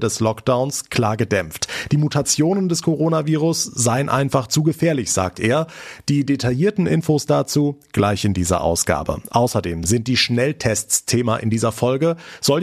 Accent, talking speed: German, 145 wpm